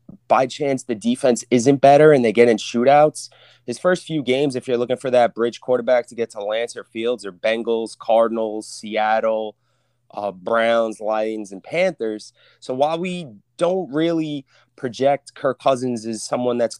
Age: 20-39